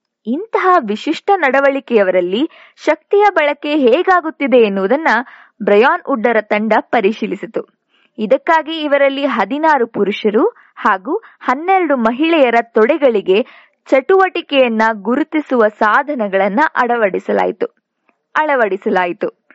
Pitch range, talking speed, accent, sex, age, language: 220-330 Hz, 75 wpm, Indian, female, 20-39, English